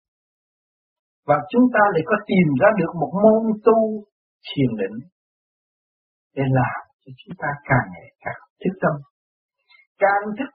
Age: 60-79